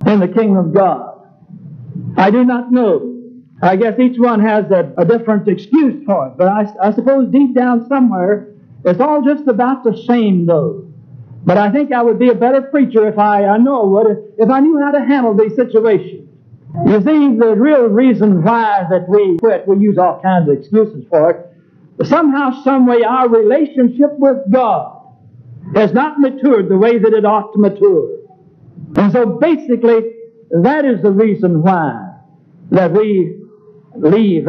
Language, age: English, 60-79